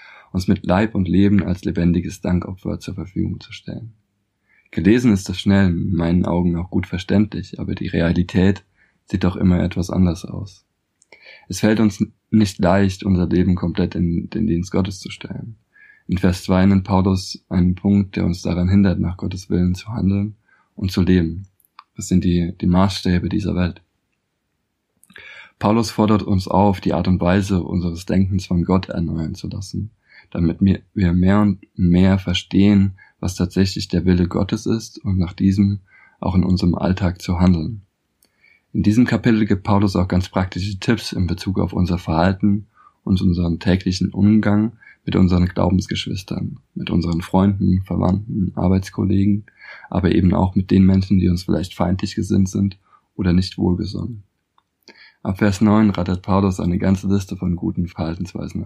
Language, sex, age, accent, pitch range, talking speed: German, male, 20-39, German, 90-100 Hz, 165 wpm